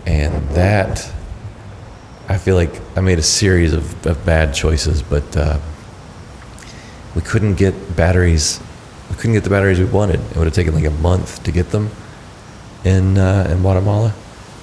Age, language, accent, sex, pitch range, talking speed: 30-49, English, American, male, 80-95 Hz, 165 wpm